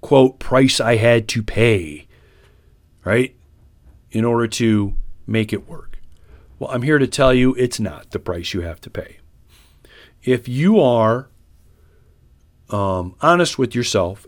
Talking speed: 145 wpm